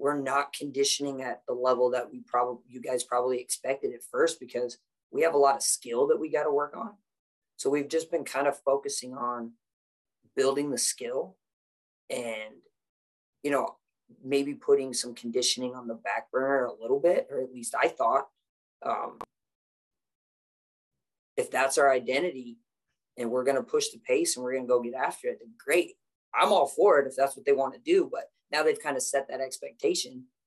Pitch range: 125-180 Hz